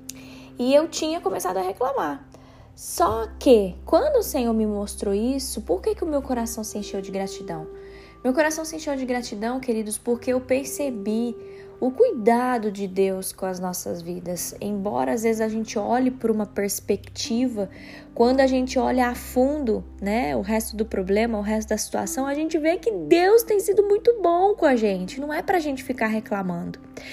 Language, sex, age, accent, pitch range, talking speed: Portuguese, female, 10-29, Brazilian, 210-275 Hz, 190 wpm